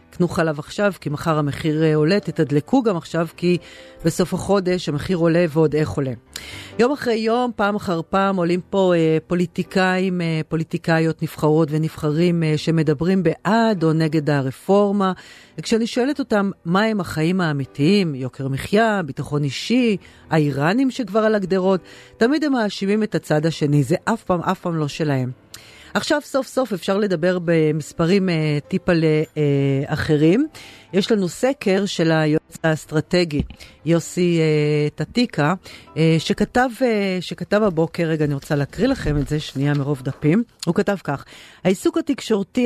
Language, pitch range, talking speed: Hebrew, 155-200 Hz, 150 wpm